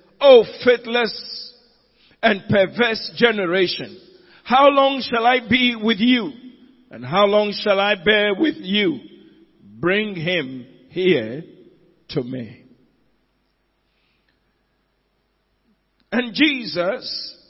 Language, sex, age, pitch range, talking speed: English, male, 50-69, 180-250 Hz, 95 wpm